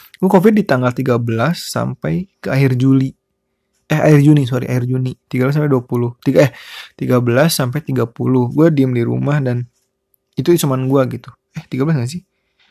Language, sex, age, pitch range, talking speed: Indonesian, male, 20-39, 125-155 Hz, 170 wpm